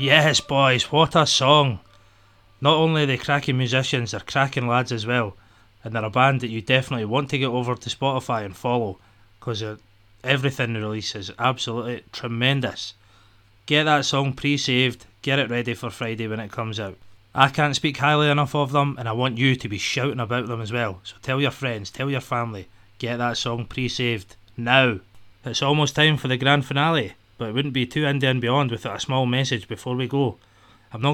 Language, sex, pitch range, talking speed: English, male, 110-135 Hz, 200 wpm